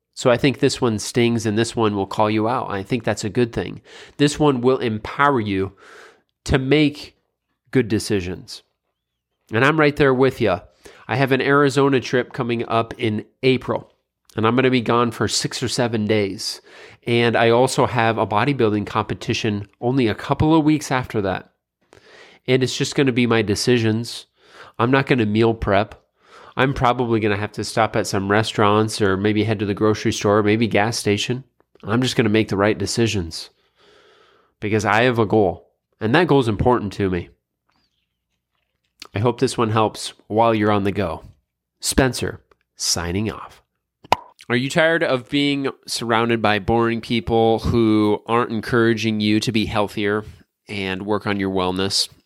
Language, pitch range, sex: English, 105-125 Hz, male